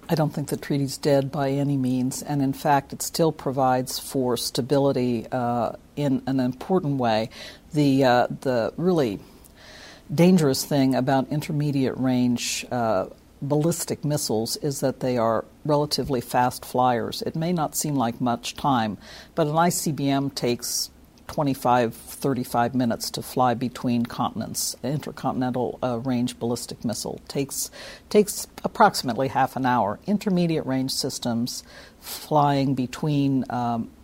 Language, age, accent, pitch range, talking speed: English, 60-79, American, 125-145 Hz, 130 wpm